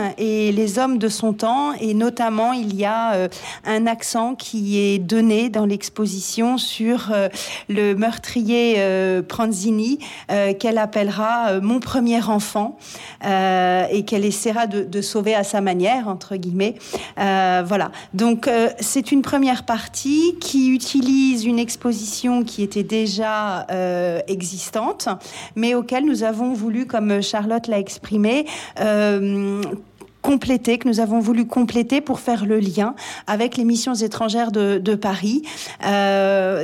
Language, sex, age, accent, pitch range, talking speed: French, female, 40-59, French, 200-235 Hz, 145 wpm